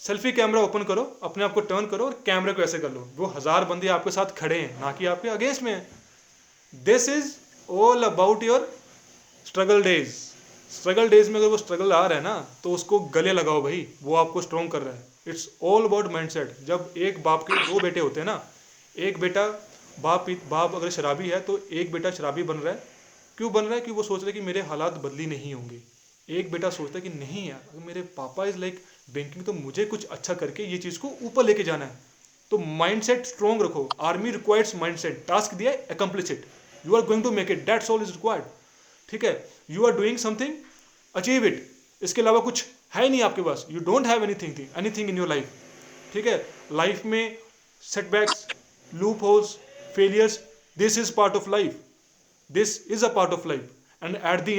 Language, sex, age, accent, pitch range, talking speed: Hindi, male, 30-49, native, 170-220 Hz, 175 wpm